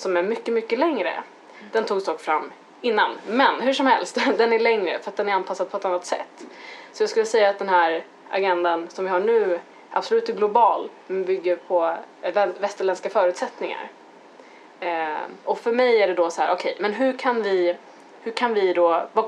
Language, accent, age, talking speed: Swedish, native, 20-39, 200 wpm